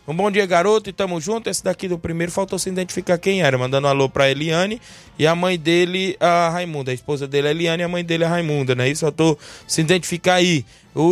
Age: 20-39